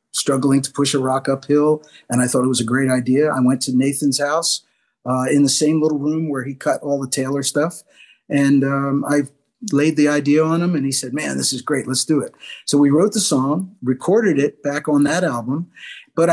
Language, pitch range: English, 135-165 Hz